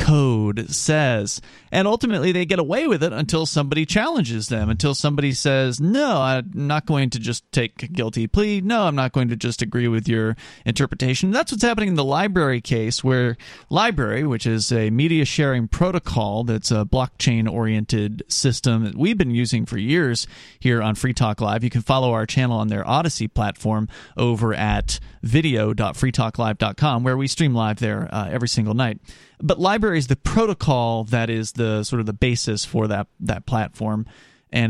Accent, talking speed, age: American, 180 wpm, 40-59